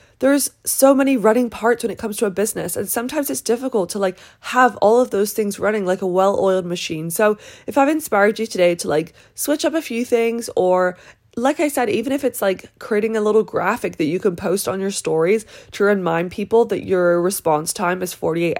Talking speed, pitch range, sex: 220 wpm, 185-240 Hz, female